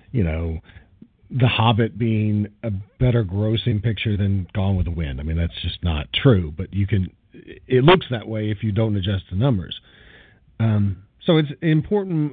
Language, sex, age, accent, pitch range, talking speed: English, male, 50-69, American, 105-135 Hz, 180 wpm